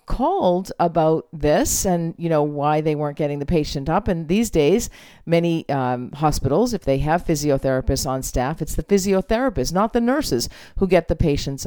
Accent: American